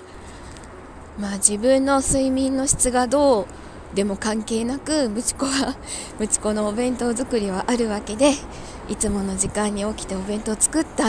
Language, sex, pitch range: Japanese, female, 210-270 Hz